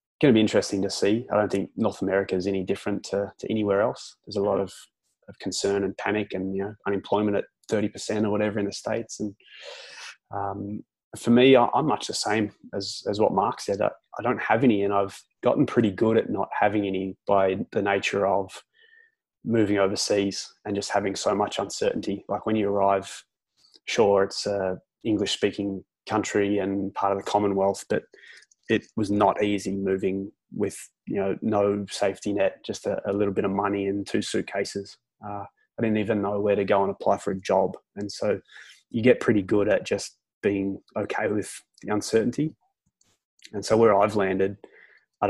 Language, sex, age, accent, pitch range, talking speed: English, male, 20-39, Australian, 100-105 Hz, 190 wpm